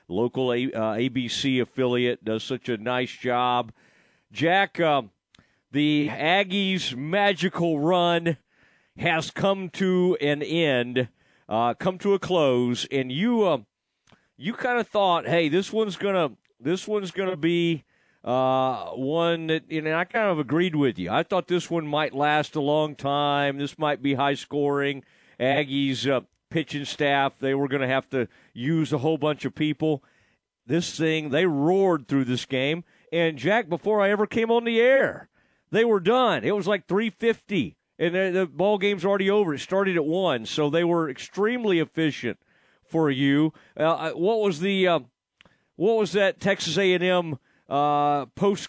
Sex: male